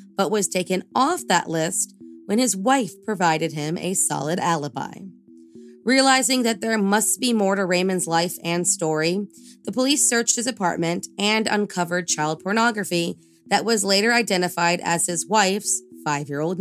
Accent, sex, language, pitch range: American, female, English, 165-215 Hz